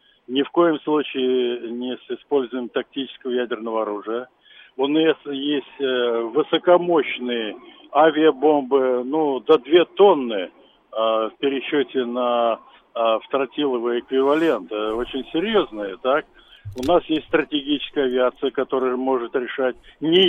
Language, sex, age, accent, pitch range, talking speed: Russian, male, 50-69, native, 130-165 Hz, 105 wpm